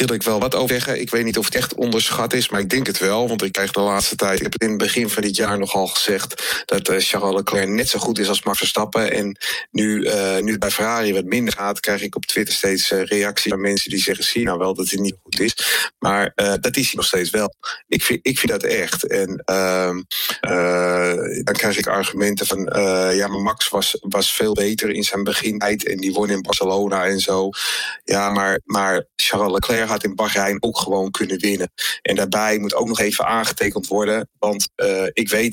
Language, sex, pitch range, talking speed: Dutch, male, 95-115 Hz, 235 wpm